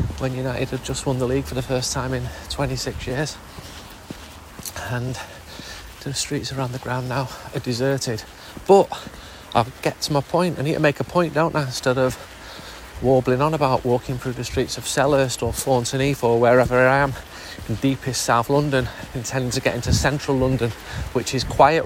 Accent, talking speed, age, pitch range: British, 185 wpm, 40-59, 115-140 Hz